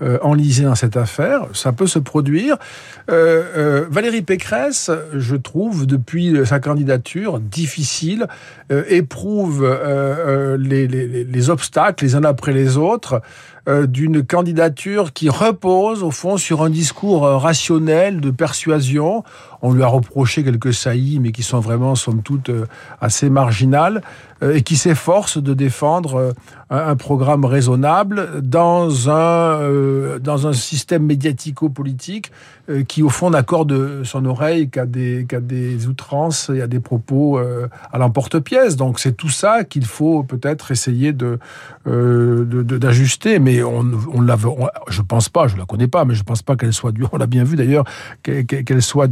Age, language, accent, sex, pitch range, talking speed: 50-69, French, French, male, 125-160 Hz, 160 wpm